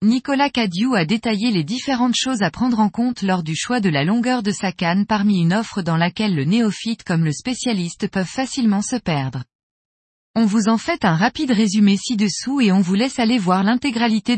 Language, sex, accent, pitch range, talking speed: French, female, French, 180-245 Hz, 205 wpm